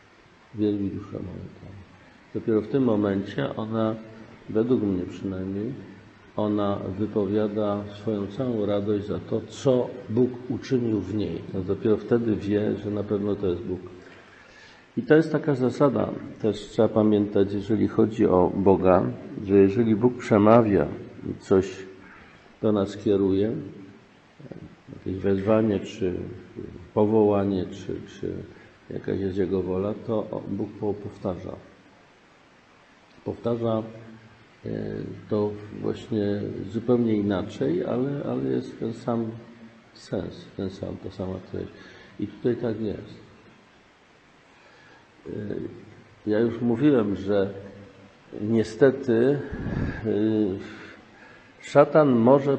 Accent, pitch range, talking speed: native, 100-115 Hz, 105 wpm